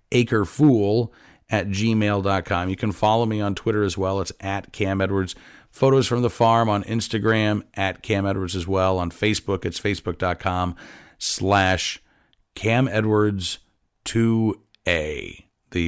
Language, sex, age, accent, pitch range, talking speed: English, male, 40-59, American, 90-115 Hz, 145 wpm